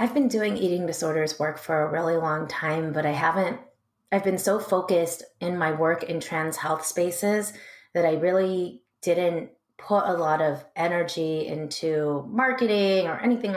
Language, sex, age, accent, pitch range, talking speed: English, female, 30-49, American, 160-185 Hz, 170 wpm